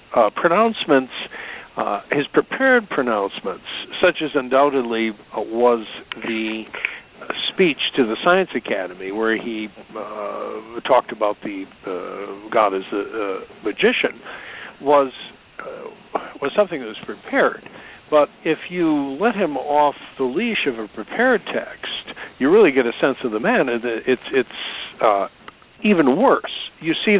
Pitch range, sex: 130-190 Hz, male